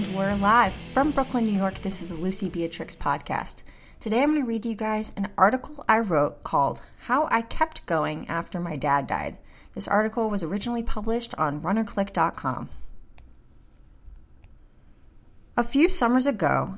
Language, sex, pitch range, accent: English, female, 165-245 Hz, American